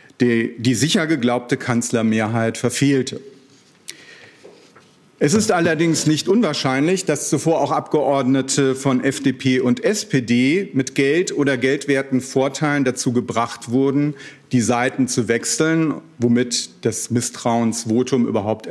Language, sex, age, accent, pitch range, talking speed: German, male, 40-59, German, 130-170 Hz, 110 wpm